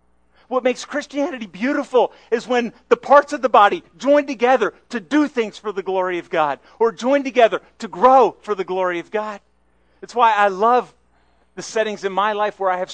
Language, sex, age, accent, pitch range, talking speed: English, male, 40-59, American, 135-225 Hz, 200 wpm